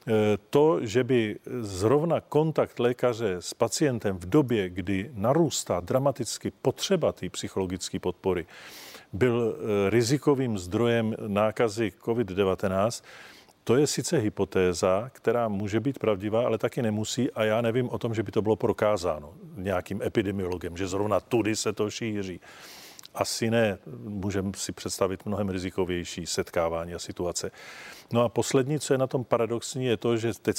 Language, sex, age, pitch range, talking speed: Czech, male, 40-59, 100-115 Hz, 145 wpm